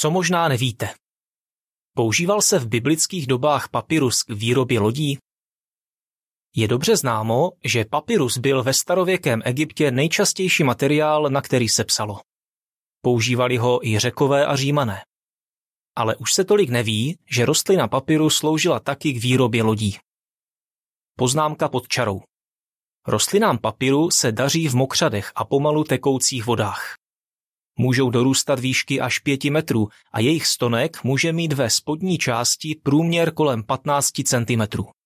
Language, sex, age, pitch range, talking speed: Czech, male, 20-39, 120-155 Hz, 130 wpm